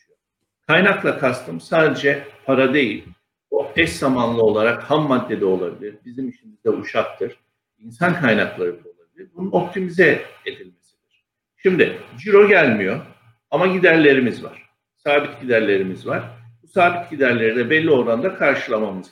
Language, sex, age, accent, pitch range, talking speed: Turkish, male, 60-79, native, 120-185 Hz, 125 wpm